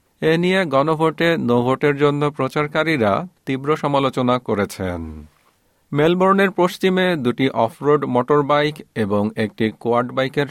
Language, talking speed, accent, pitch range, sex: Bengali, 85 wpm, native, 110-155 Hz, male